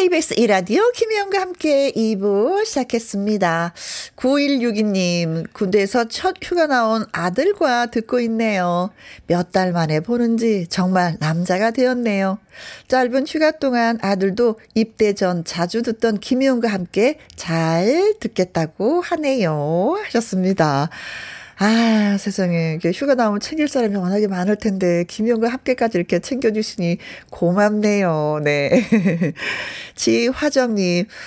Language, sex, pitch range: Korean, female, 180-255 Hz